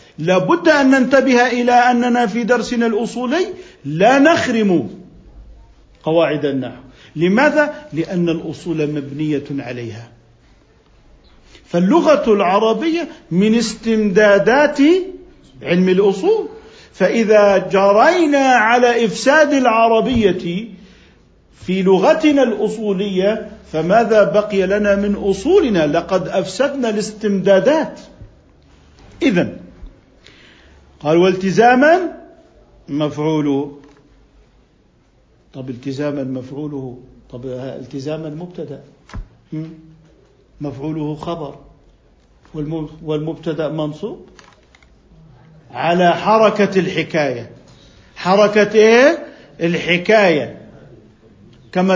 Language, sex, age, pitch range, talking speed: Arabic, male, 50-69, 155-240 Hz, 70 wpm